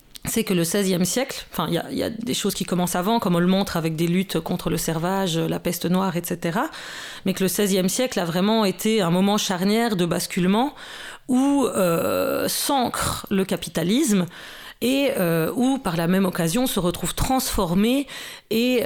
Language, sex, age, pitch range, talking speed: French, female, 30-49, 175-225 Hz, 185 wpm